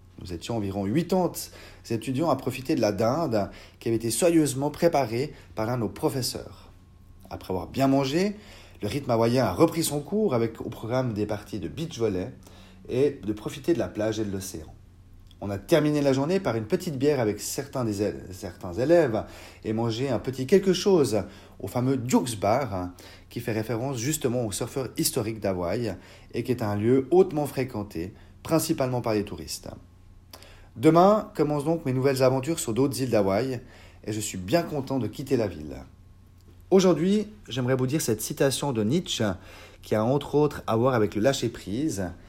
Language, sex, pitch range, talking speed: French, male, 95-140 Hz, 180 wpm